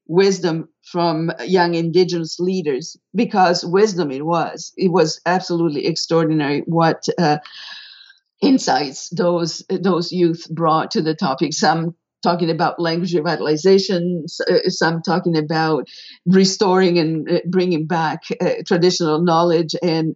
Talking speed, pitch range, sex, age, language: 115 wpm, 160-180 Hz, female, 50-69, English